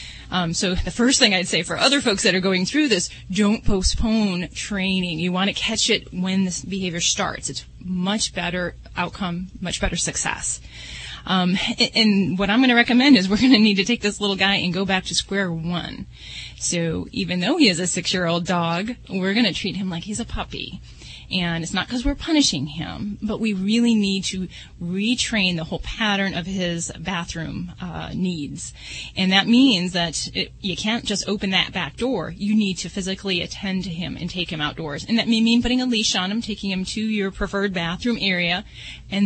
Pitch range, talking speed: 175-215 Hz, 205 wpm